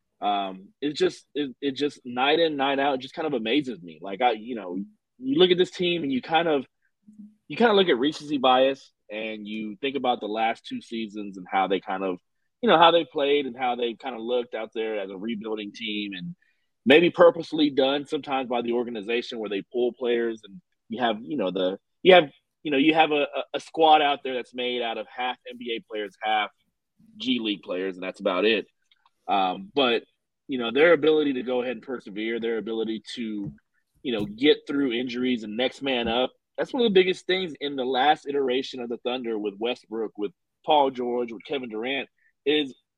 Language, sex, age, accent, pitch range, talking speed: English, male, 30-49, American, 115-160 Hz, 215 wpm